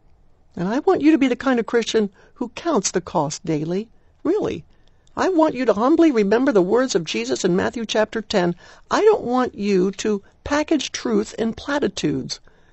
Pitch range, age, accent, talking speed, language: 165-235 Hz, 60-79, American, 185 wpm, English